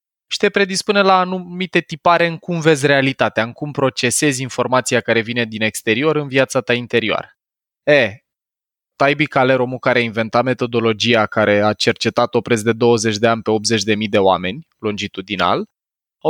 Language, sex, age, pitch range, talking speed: Romanian, male, 20-39, 120-160 Hz, 165 wpm